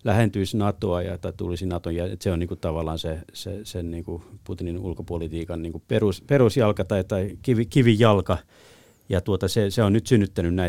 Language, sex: Finnish, male